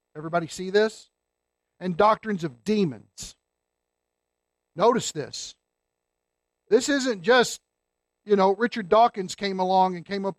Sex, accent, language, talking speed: male, American, English, 120 wpm